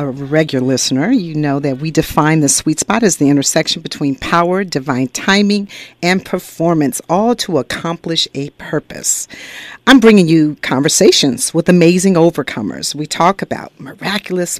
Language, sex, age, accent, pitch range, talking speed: English, female, 50-69, American, 150-205 Hz, 150 wpm